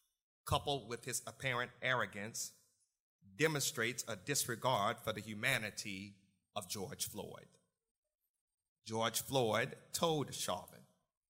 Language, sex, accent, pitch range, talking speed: English, male, American, 105-135 Hz, 95 wpm